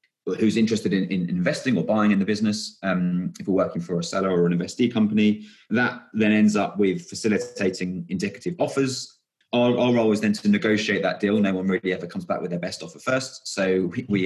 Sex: male